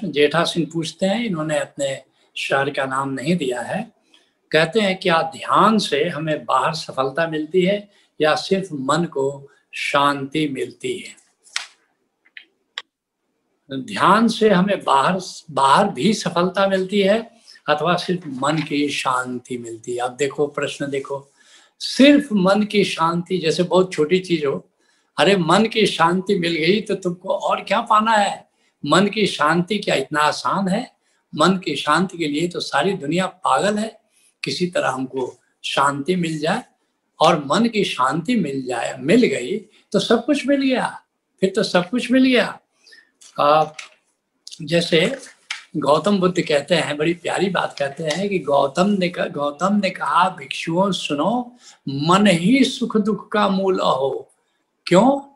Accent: native